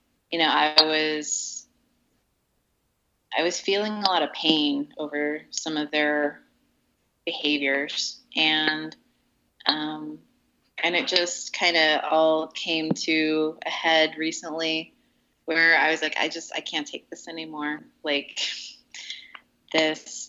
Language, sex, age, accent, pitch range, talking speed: English, female, 30-49, American, 155-175 Hz, 125 wpm